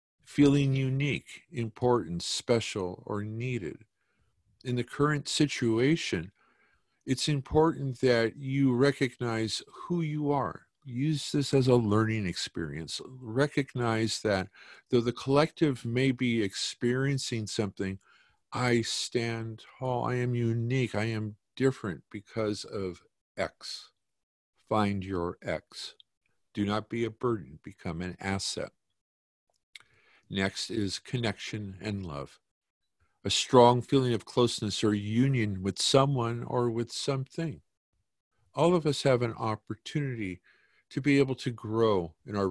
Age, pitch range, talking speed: 50-69, 100-130 Hz, 120 wpm